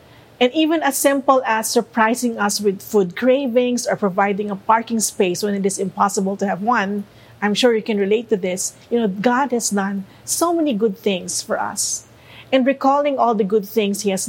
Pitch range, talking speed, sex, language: 195-240 Hz, 200 wpm, female, English